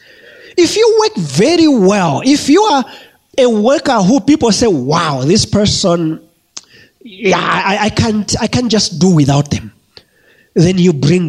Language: English